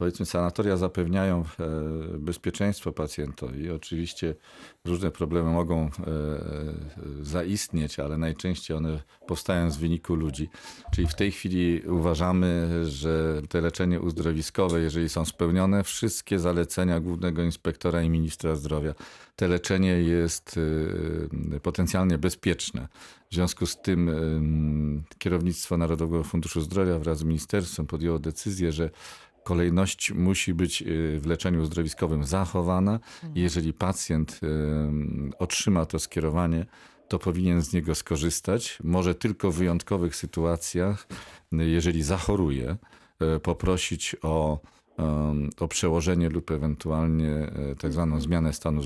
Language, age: Polish, 40-59